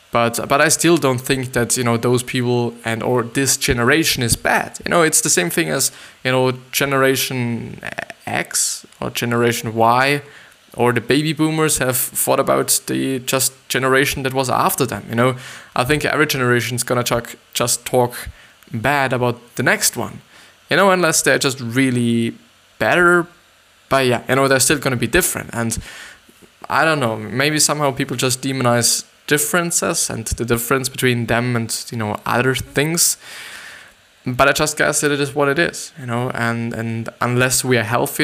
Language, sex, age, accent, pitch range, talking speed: English, male, 20-39, German, 120-145 Hz, 180 wpm